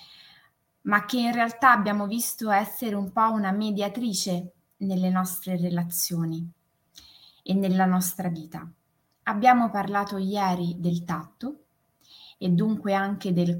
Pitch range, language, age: 180-230 Hz, Italian, 20-39